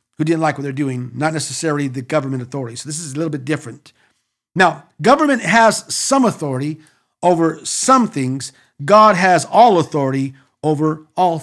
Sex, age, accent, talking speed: male, 50-69, American, 170 wpm